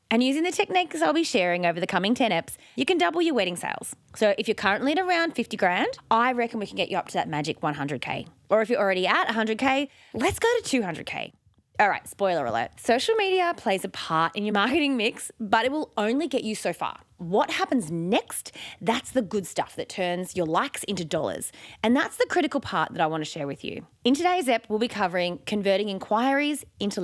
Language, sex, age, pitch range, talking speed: English, female, 20-39, 185-255 Hz, 225 wpm